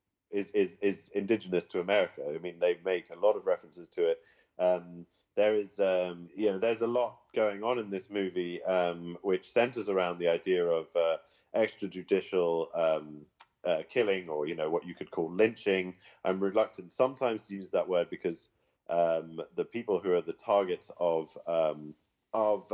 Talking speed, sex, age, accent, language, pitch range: 180 wpm, male, 30-49, British, English, 85-115 Hz